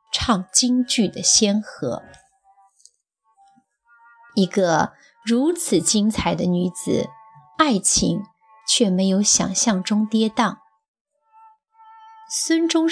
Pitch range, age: 210-290 Hz, 30-49